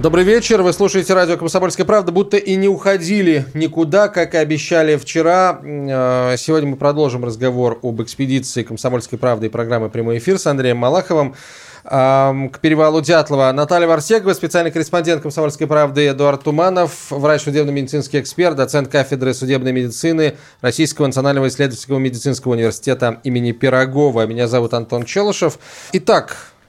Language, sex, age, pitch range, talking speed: Russian, male, 20-39, 125-160 Hz, 135 wpm